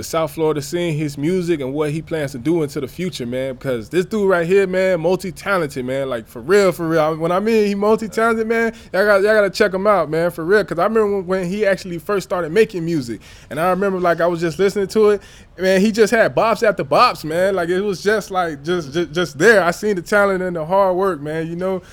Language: English